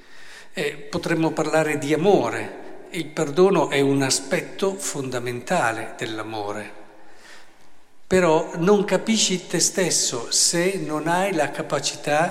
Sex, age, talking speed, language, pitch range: male, 50-69, 105 wpm, Italian, 140-165 Hz